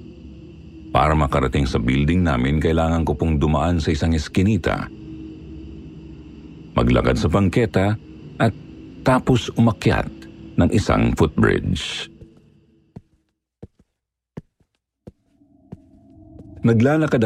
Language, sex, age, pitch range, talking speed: Filipino, male, 50-69, 75-100 Hz, 75 wpm